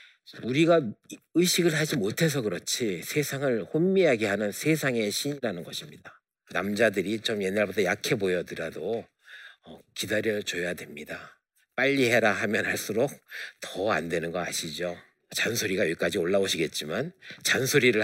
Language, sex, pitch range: Korean, male, 100-130 Hz